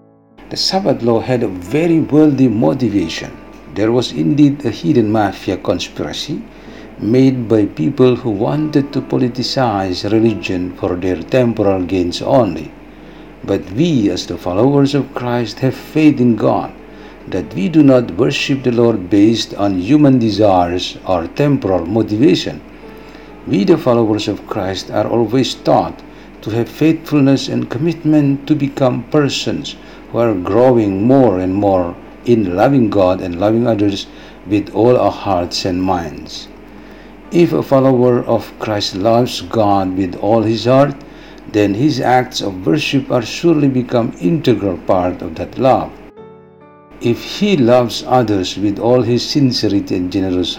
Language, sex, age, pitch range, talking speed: Indonesian, male, 60-79, 100-135 Hz, 140 wpm